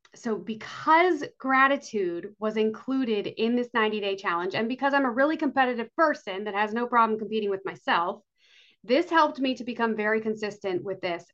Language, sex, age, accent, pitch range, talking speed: English, female, 30-49, American, 210-275 Hz, 170 wpm